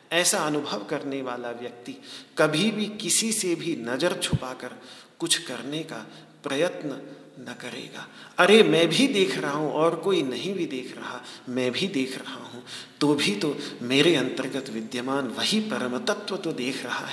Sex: male